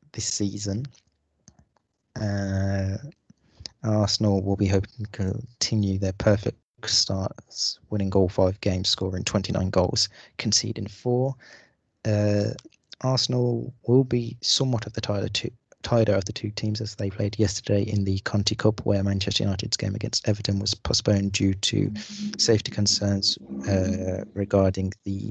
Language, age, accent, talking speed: English, 30-49, British, 135 wpm